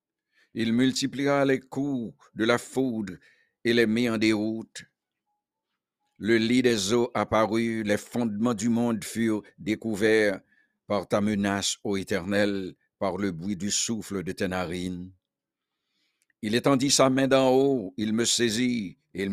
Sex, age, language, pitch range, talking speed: male, 60-79, English, 100-120 Hz, 145 wpm